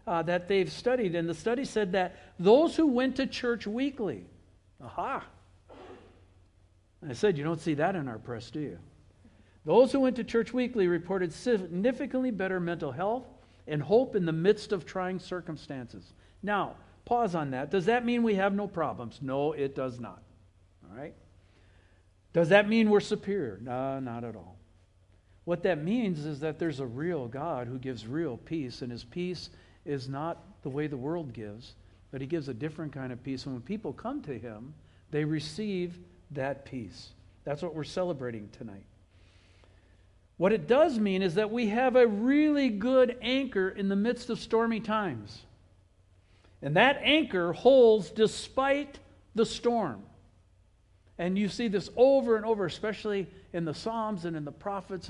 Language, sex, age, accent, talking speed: English, male, 60-79, American, 170 wpm